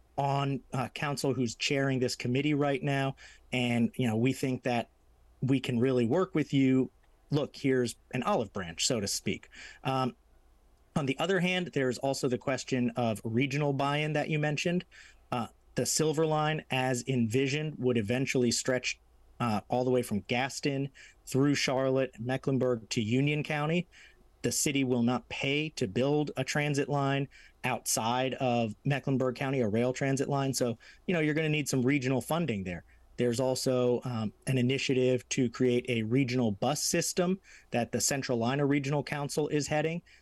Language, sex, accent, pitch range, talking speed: English, male, American, 120-145 Hz, 165 wpm